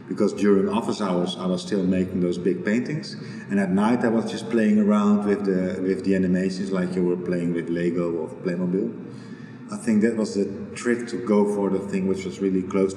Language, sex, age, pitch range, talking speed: English, male, 40-59, 90-105 Hz, 215 wpm